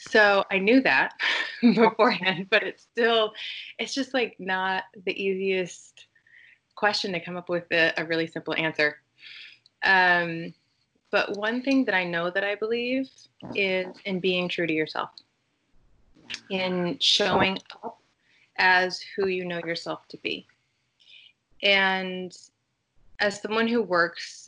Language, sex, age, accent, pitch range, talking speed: English, female, 30-49, American, 170-205 Hz, 135 wpm